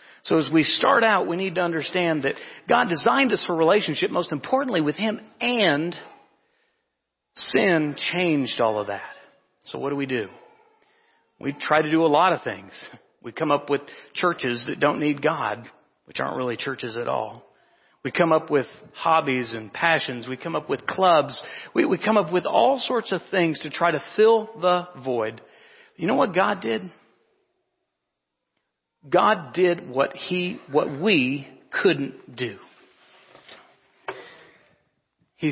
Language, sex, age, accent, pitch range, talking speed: English, male, 40-59, American, 140-190 Hz, 160 wpm